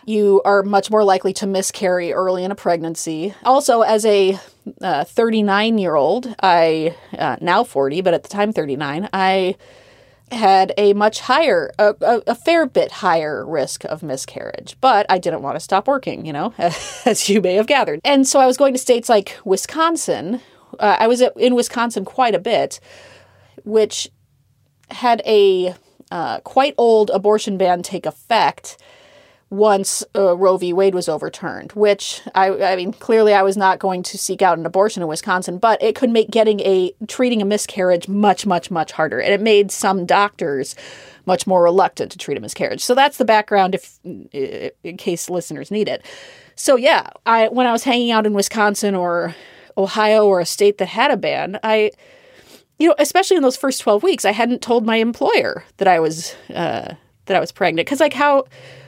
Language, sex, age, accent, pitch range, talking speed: English, female, 30-49, American, 185-235 Hz, 190 wpm